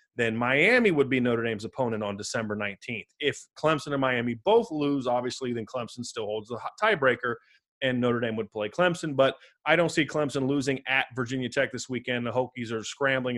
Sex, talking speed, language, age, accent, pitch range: male, 195 wpm, English, 30-49, American, 120-145 Hz